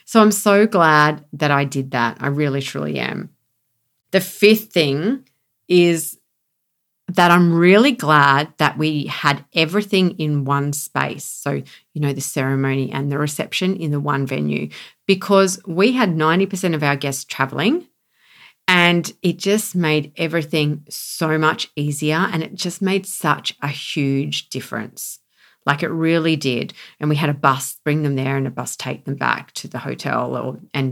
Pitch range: 140-180 Hz